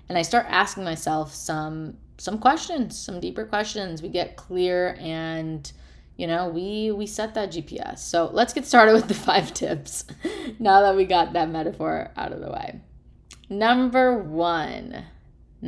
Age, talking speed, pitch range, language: 20-39, 160 wpm, 160-205 Hz, English